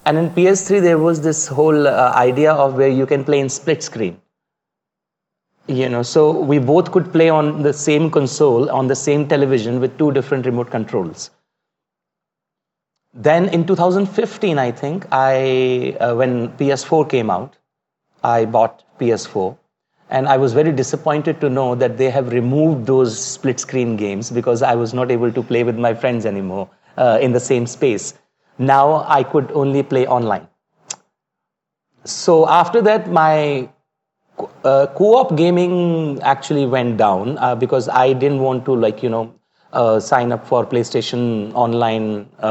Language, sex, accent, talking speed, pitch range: English, male, Indian, 155 wpm, 120-155 Hz